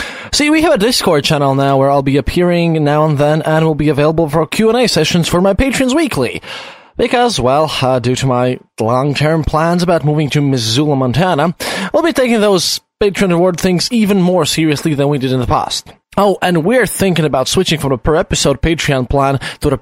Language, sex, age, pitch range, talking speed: English, male, 20-39, 125-175 Hz, 205 wpm